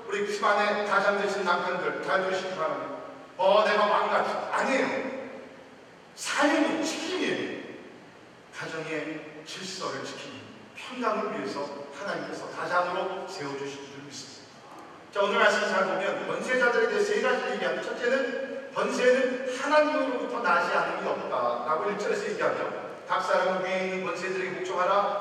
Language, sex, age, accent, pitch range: Korean, male, 40-59, native, 185-300 Hz